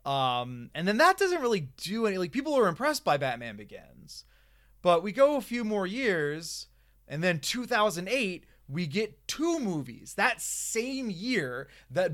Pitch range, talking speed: 140-205 Hz, 165 wpm